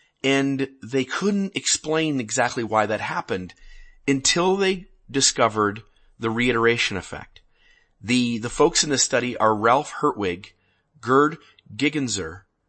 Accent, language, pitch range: American, English, 110-160 Hz